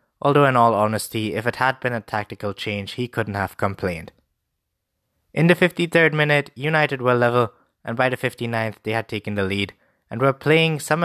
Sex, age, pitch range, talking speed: male, 20-39, 105-150 Hz, 190 wpm